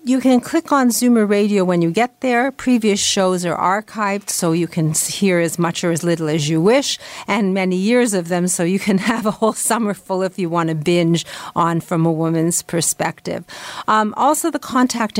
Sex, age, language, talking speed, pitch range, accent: female, 50-69, English, 215 wpm, 170-205 Hz, American